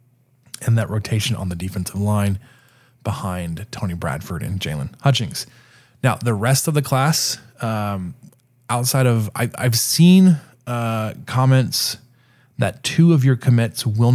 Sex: male